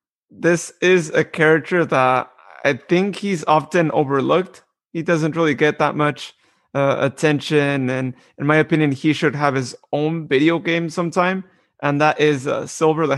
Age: 30-49